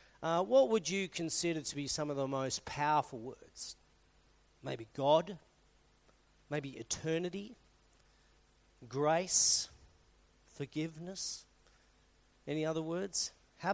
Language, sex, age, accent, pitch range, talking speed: English, male, 40-59, Australian, 130-160 Hz, 100 wpm